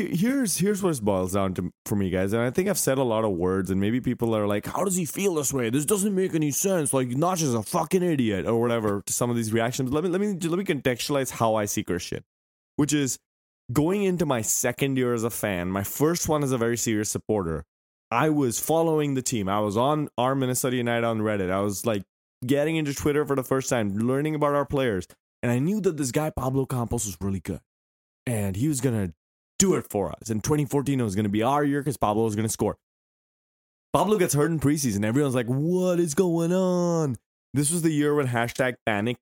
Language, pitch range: English, 100-145 Hz